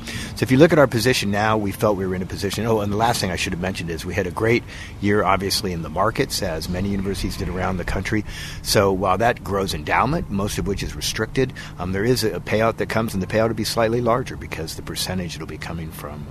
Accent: American